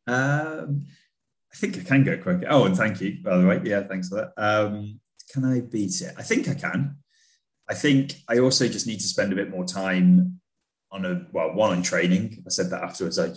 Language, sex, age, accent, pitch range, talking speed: English, male, 20-39, British, 90-105 Hz, 225 wpm